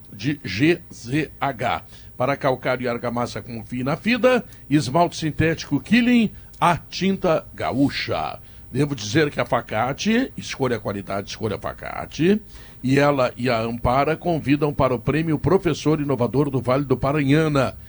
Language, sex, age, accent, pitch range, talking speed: Portuguese, male, 60-79, Brazilian, 120-165 Hz, 140 wpm